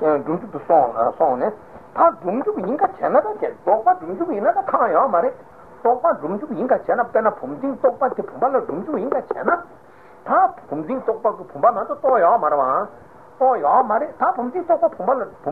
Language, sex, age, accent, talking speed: Italian, male, 60-79, Indian, 90 wpm